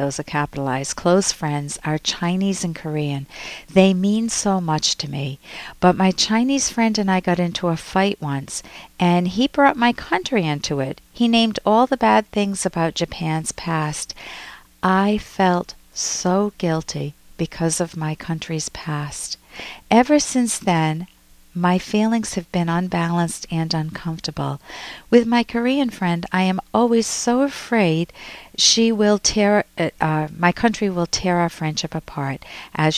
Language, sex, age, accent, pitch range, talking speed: English, female, 50-69, American, 155-200 Hz, 150 wpm